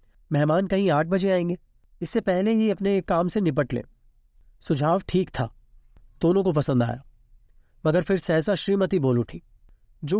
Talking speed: 160 wpm